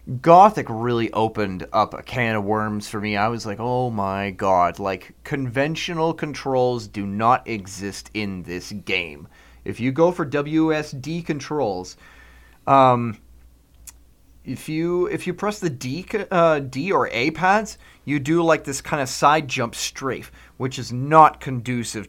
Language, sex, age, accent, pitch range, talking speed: English, male, 30-49, American, 110-160 Hz, 155 wpm